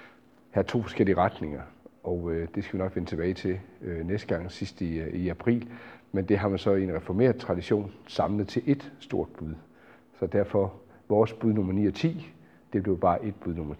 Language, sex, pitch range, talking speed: Danish, male, 95-125 Hz, 210 wpm